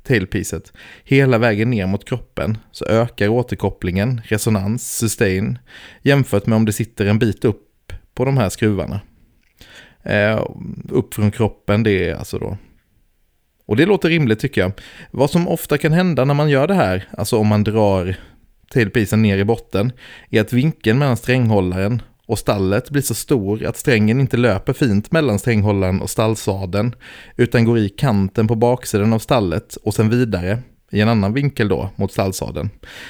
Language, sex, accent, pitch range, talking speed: Swedish, male, native, 100-125 Hz, 165 wpm